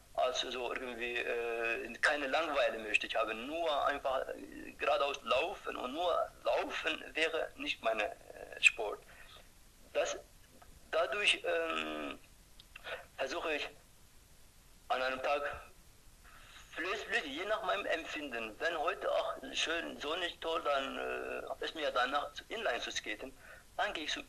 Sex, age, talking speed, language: male, 50-69, 135 wpm, German